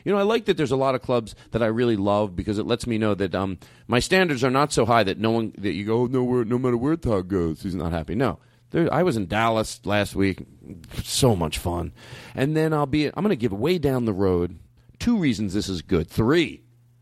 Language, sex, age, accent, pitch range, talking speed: English, male, 40-59, American, 100-130 Hz, 255 wpm